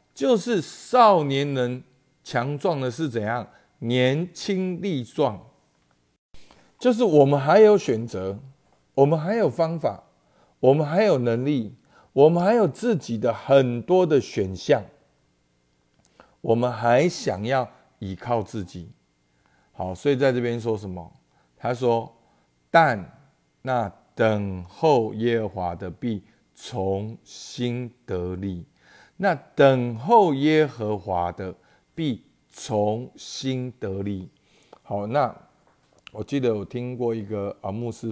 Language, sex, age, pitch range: Chinese, male, 50-69, 95-135 Hz